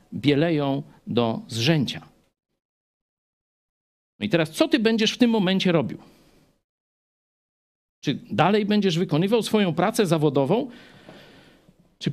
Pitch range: 145-220 Hz